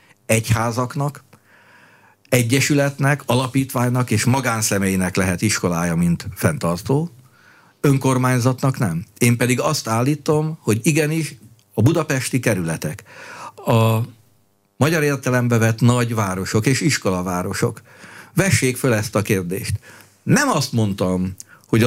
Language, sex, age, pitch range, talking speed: Hungarian, male, 60-79, 105-145 Hz, 100 wpm